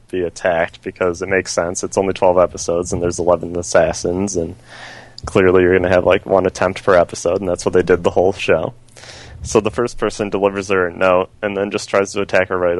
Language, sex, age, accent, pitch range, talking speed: English, male, 20-39, American, 95-115 Hz, 225 wpm